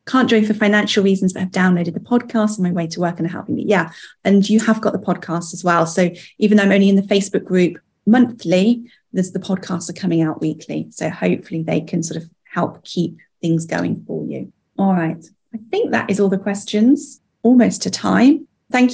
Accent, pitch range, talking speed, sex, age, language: British, 185-215 Hz, 220 wpm, female, 30-49, English